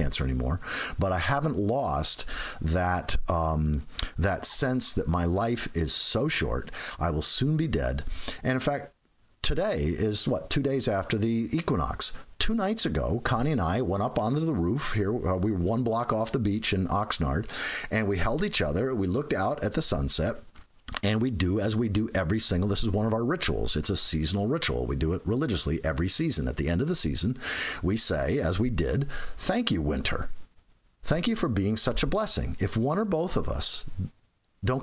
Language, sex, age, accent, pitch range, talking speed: English, male, 50-69, American, 85-125 Hz, 200 wpm